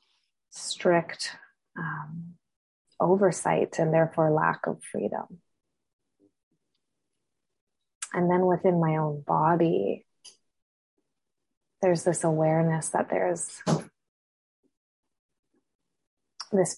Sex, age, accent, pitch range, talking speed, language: female, 20-39, American, 160-180 Hz, 70 wpm, English